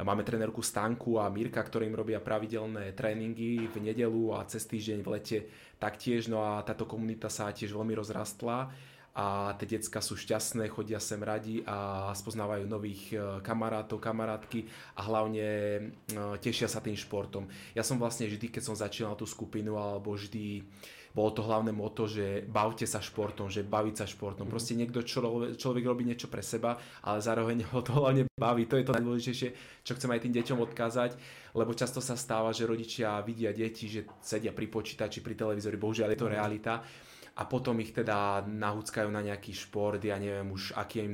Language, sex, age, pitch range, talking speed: Slovak, male, 20-39, 105-115 Hz, 180 wpm